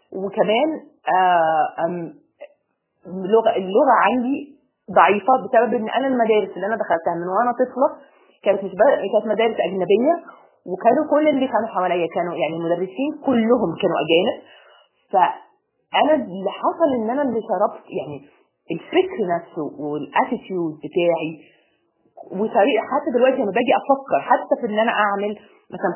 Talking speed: 125 wpm